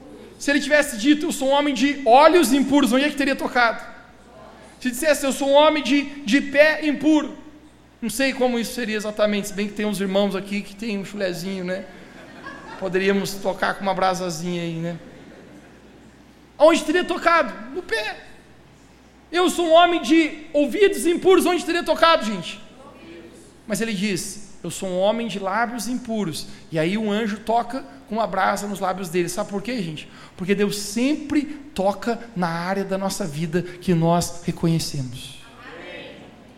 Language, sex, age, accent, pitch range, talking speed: Portuguese, male, 40-59, Brazilian, 205-300 Hz, 170 wpm